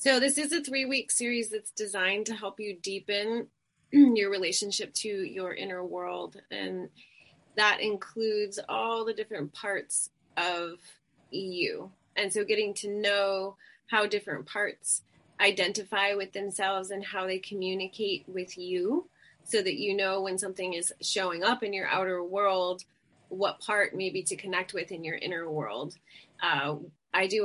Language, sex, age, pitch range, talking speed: English, female, 30-49, 185-220 Hz, 155 wpm